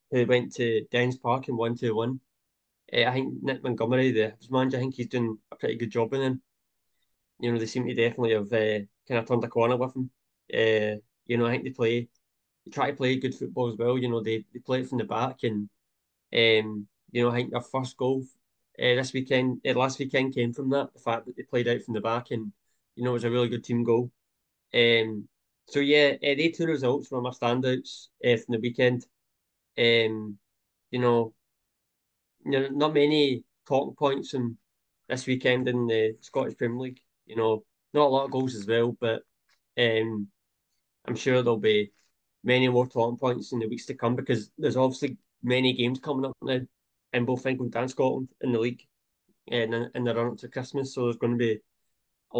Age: 20-39